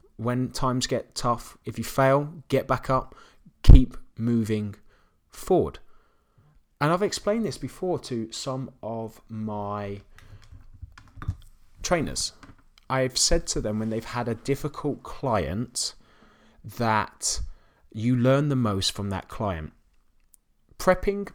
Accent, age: British, 30-49